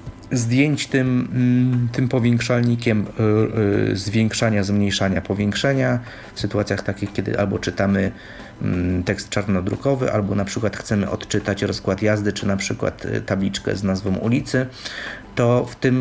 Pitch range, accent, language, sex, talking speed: 100-120 Hz, native, Polish, male, 120 wpm